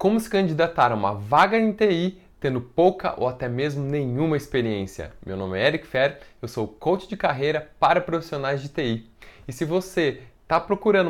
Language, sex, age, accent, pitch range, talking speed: Portuguese, male, 20-39, Brazilian, 130-175 Hz, 185 wpm